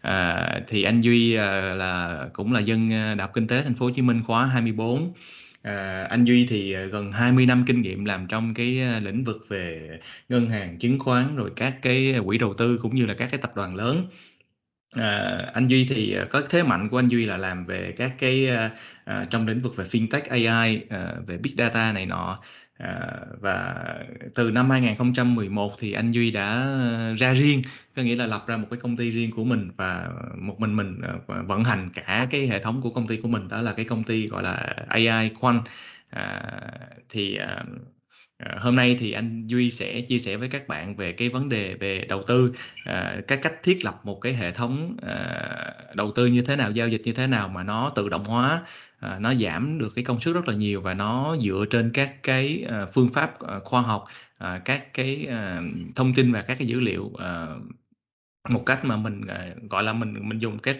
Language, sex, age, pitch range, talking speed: Vietnamese, male, 20-39, 105-125 Hz, 205 wpm